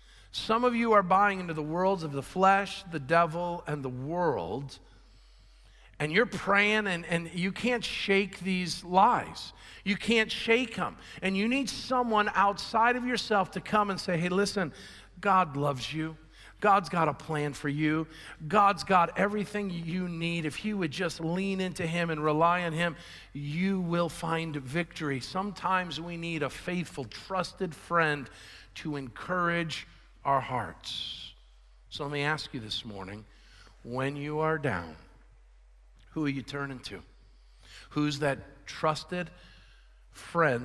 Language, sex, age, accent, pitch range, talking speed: English, male, 50-69, American, 145-195 Hz, 150 wpm